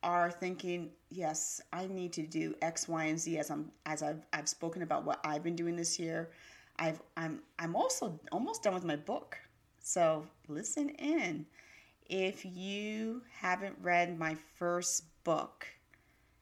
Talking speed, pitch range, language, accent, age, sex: 160 wpm, 155-185 Hz, English, American, 30-49, female